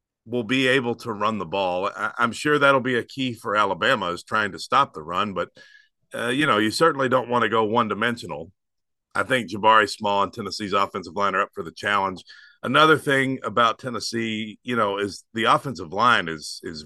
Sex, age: male, 50-69